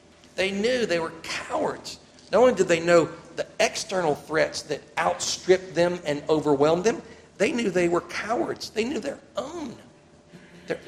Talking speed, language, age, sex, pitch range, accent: 160 wpm, English, 50-69, male, 135-165 Hz, American